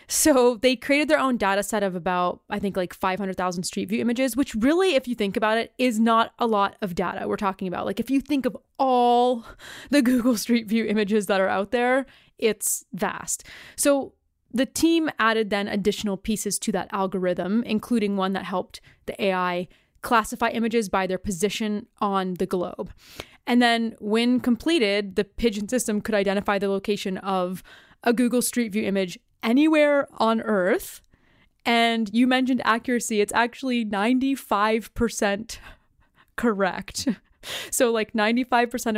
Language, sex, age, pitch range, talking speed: English, female, 20-39, 195-245 Hz, 160 wpm